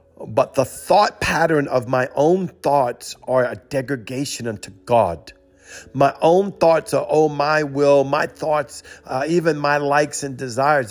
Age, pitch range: 50-69, 130-155 Hz